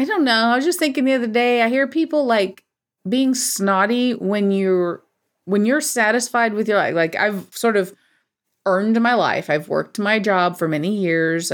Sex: female